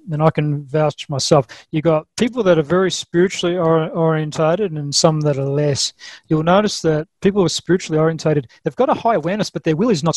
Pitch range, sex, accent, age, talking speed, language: 155-185 Hz, male, Australian, 30-49, 210 wpm, English